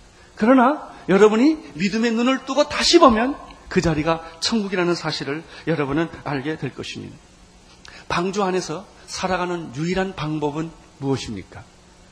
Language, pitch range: Korean, 150-230 Hz